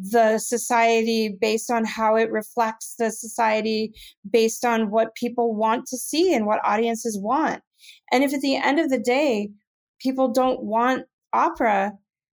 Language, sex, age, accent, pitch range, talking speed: English, female, 30-49, American, 205-245 Hz, 155 wpm